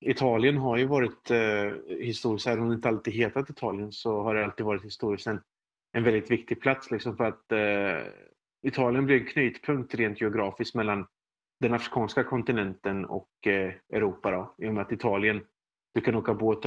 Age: 30-49